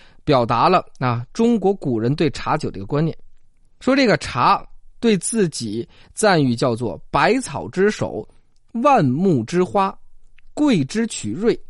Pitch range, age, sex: 120-185 Hz, 20-39, male